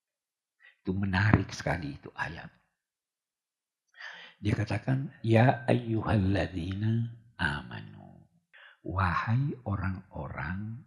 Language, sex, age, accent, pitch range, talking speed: Indonesian, male, 50-69, native, 105-130 Hz, 65 wpm